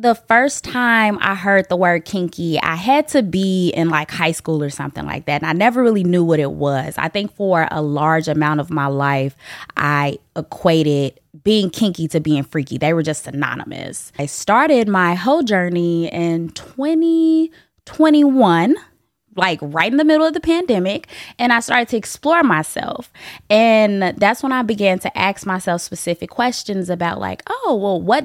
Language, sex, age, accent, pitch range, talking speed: English, female, 20-39, American, 165-230 Hz, 180 wpm